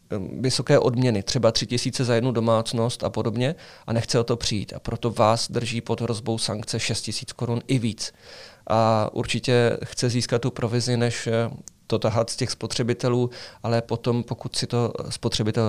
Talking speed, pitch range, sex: 170 wpm, 115-125 Hz, male